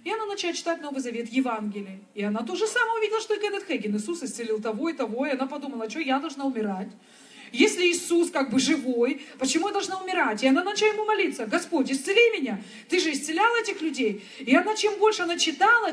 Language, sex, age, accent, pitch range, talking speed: Russian, female, 40-59, native, 250-365 Hz, 215 wpm